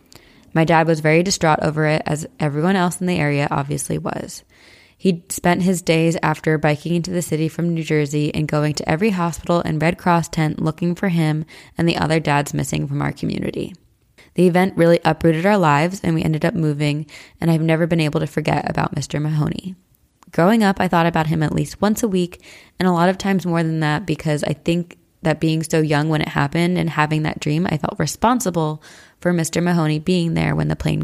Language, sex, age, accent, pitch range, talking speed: English, female, 20-39, American, 155-180 Hz, 215 wpm